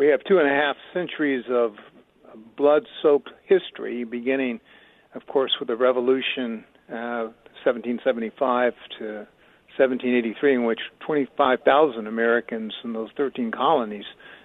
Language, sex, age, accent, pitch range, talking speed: English, male, 60-79, American, 125-155 Hz, 120 wpm